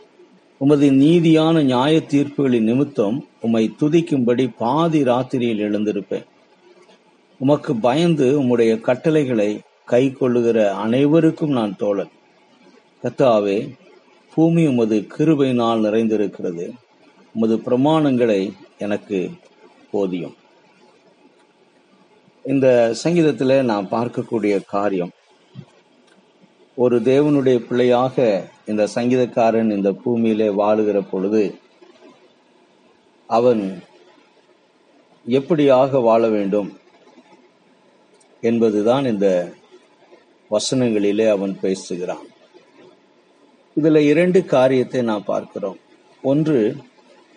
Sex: male